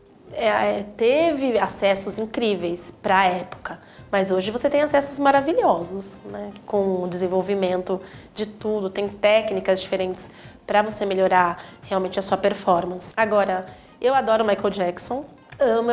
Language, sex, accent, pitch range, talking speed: Portuguese, female, Brazilian, 200-255 Hz, 130 wpm